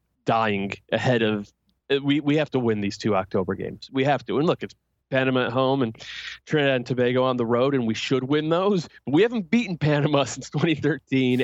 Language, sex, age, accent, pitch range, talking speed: English, male, 20-39, American, 115-140 Hz, 205 wpm